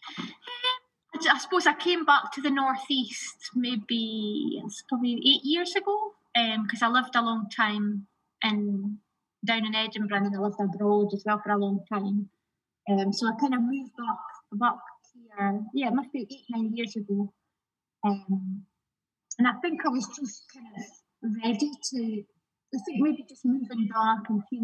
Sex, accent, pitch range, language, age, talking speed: female, British, 210-260 Hz, English, 20-39, 170 wpm